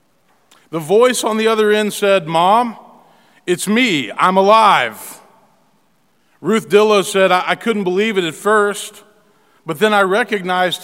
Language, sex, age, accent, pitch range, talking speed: English, male, 40-59, American, 180-220 Hz, 145 wpm